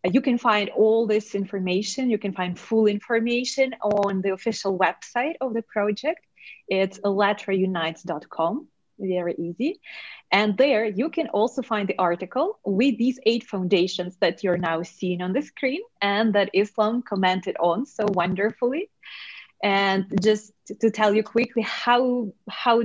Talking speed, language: 145 wpm, English